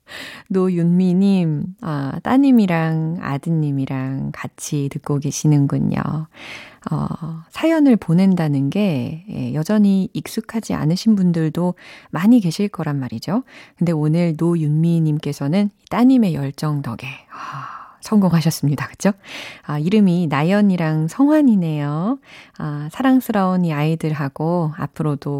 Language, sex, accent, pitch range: Korean, female, native, 150-215 Hz